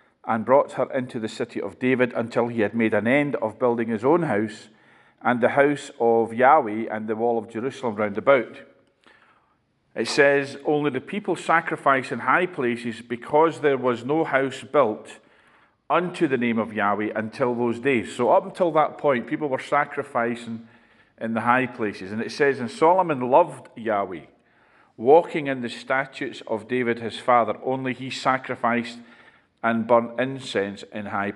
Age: 40-59